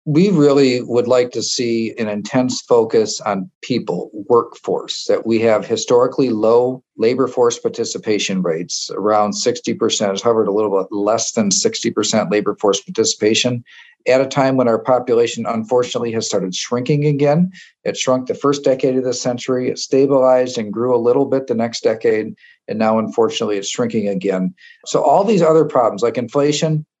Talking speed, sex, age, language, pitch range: 170 wpm, male, 50-69, English, 110-135 Hz